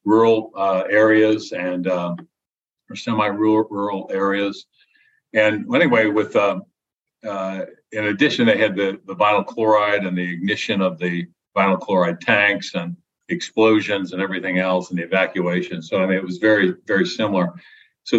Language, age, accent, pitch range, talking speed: English, 50-69, American, 90-110 Hz, 160 wpm